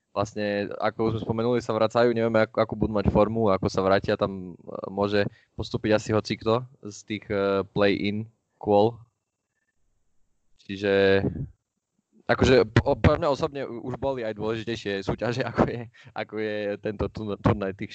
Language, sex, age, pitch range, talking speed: Slovak, male, 20-39, 100-120 Hz, 145 wpm